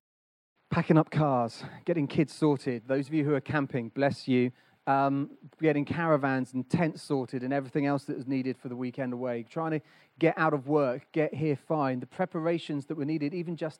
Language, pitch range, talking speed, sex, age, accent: English, 130-160 Hz, 200 wpm, male, 30-49, British